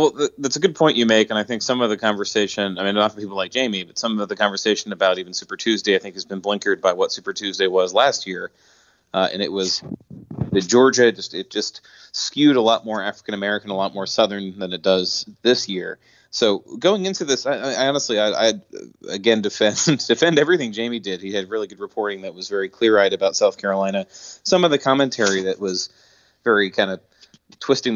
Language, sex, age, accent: English, male, 30-49, American